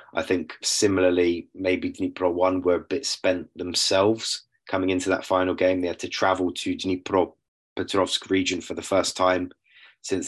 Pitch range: 85-95 Hz